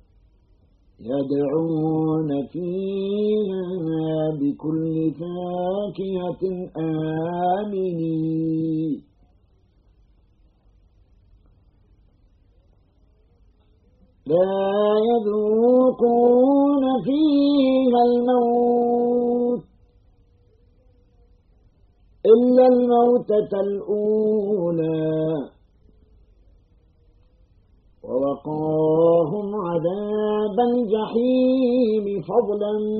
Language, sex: Arabic, male